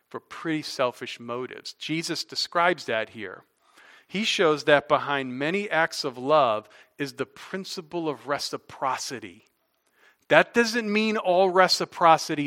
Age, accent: 40-59, American